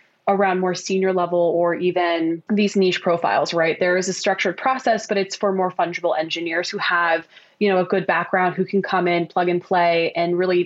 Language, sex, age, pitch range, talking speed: English, female, 20-39, 170-195 Hz, 210 wpm